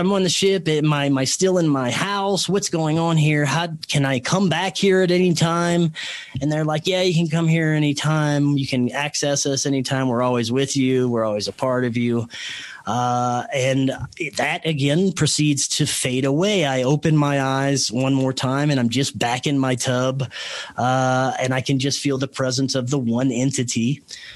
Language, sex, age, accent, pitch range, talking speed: English, male, 30-49, American, 130-155 Hz, 200 wpm